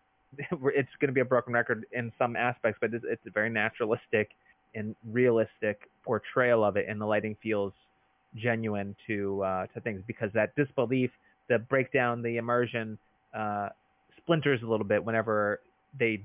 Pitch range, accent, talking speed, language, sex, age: 110-130 Hz, American, 160 wpm, English, male, 20-39